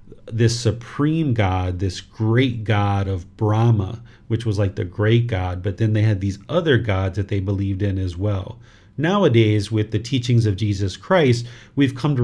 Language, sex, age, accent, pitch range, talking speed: English, male, 40-59, American, 105-125 Hz, 180 wpm